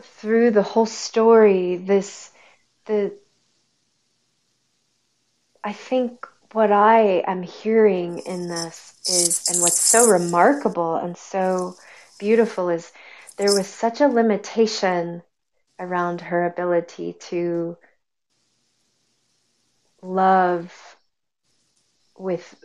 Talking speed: 90 wpm